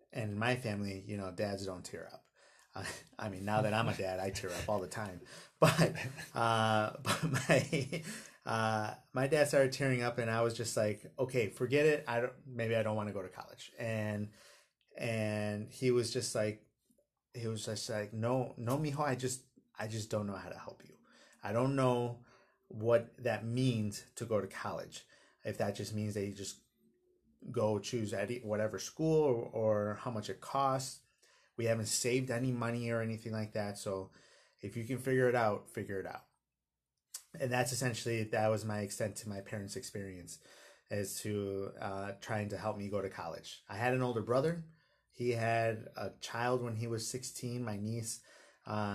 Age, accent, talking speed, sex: 30-49, American, 195 wpm, male